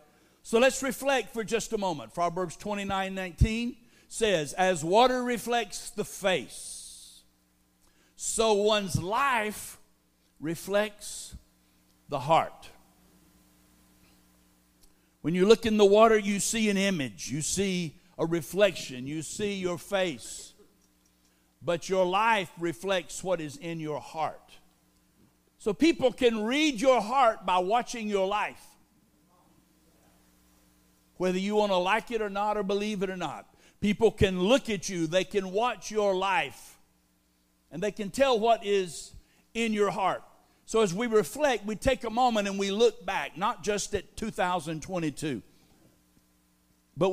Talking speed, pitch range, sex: 140 wpm, 130-210 Hz, male